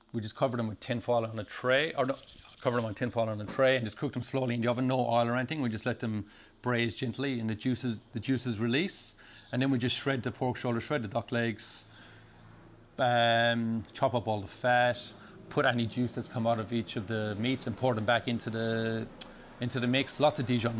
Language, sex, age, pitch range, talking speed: English, male, 30-49, 110-125 Hz, 240 wpm